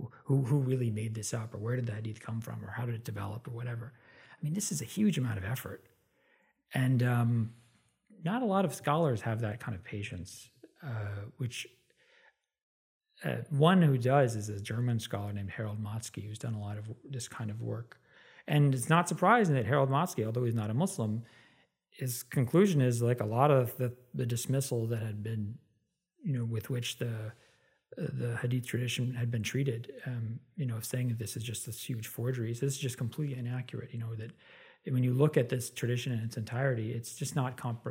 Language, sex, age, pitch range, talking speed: English, male, 40-59, 115-135 Hz, 210 wpm